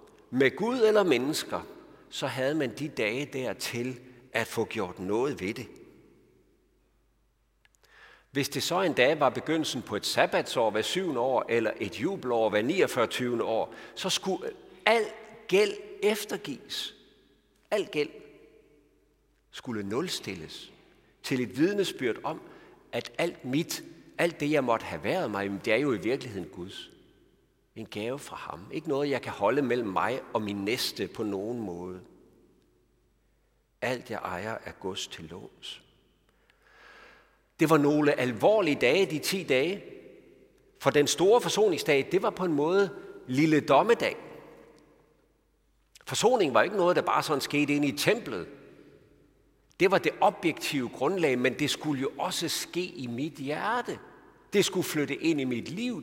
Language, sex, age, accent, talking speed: Danish, male, 50-69, native, 150 wpm